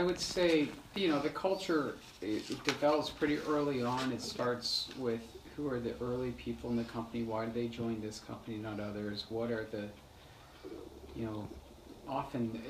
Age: 40-59